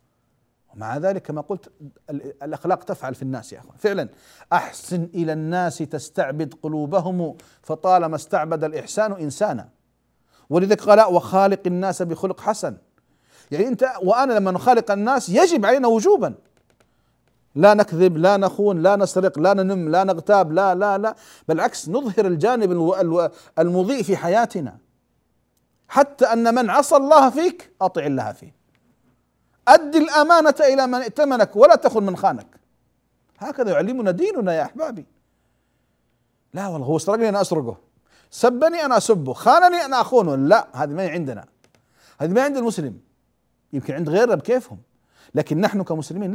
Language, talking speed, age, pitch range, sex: Arabic, 135 wpm, 50-69, 150-220 Hz, male